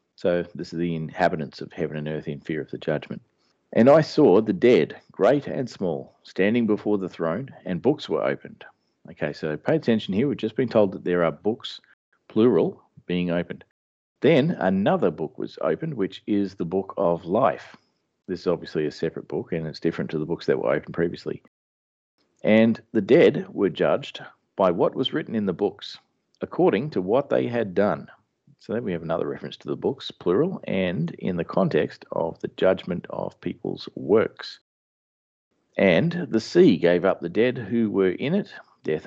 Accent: Australian